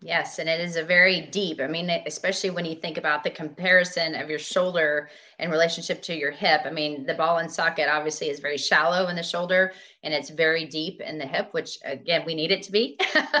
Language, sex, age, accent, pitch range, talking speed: English, female, 30-49, American, 155-195 Hz, 230 wpm